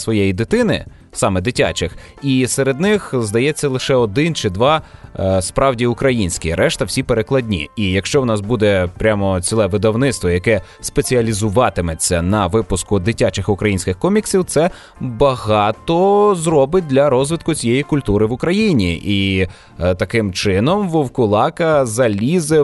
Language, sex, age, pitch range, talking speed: Russian, male, 20-39, 105-140 Hz, 120 wpm